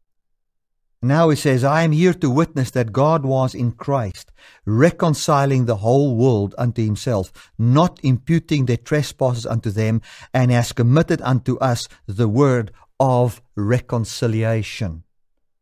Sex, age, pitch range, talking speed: male, 50-69, 120-165 Hz, 130 wpm